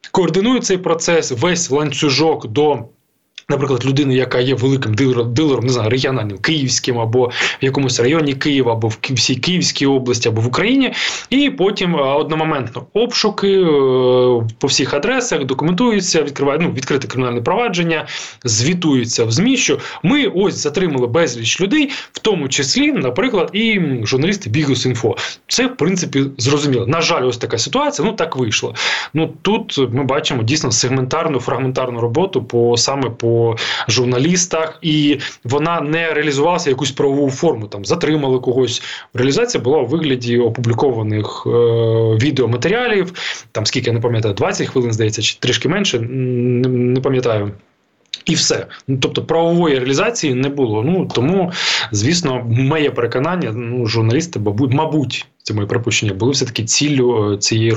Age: 20-39